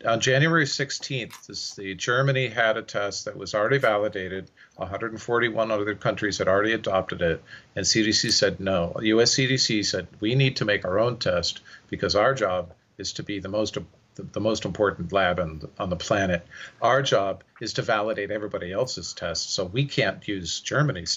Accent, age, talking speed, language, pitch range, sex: American, 50-69, 180 wpm, English, 95-120 Hz, male